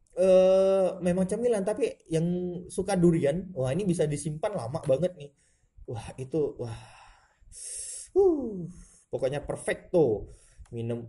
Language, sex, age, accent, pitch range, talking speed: Indonesian, male, 20-39, native, 125-180 Hz, 125 wpm